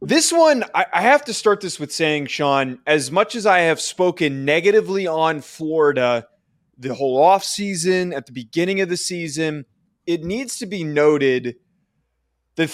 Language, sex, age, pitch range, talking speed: English, male, 20-39, 135-180 Hz, 160 wpm